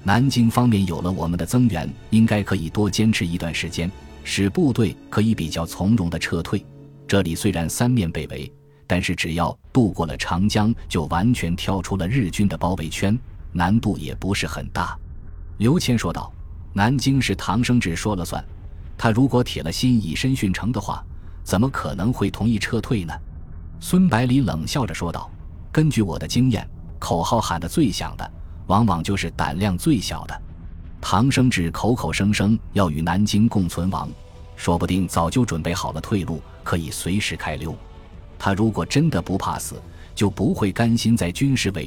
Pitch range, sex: 85-115 Hz, male